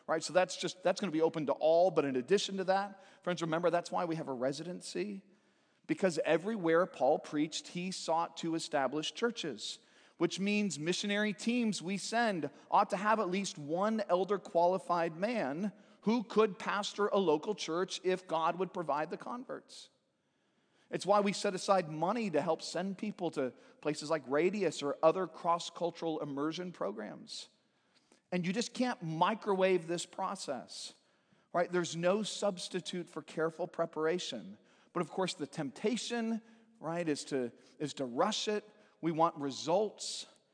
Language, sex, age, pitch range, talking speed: English, male, 40-59, 160-205 Hz, 160 wpm